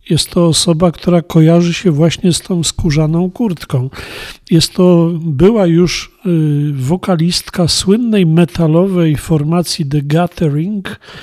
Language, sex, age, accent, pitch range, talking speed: Polish, male, 40-59, native, 150-180 Hz, 110 wpm